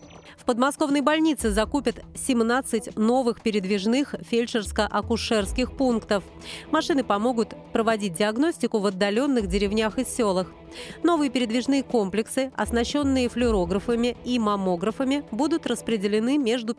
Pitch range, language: 210-265 Hz, Russian